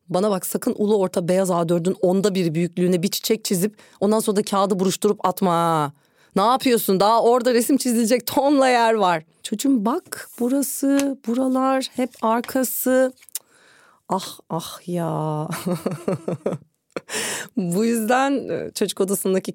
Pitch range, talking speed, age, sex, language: 175-230 Hz, 125 wpm, 30-49, female, Turkish